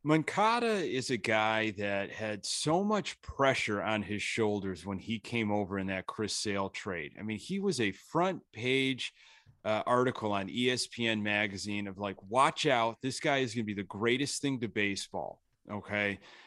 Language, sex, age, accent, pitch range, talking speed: English, male, 30-49, American, 110-150 Hz, 180 wpm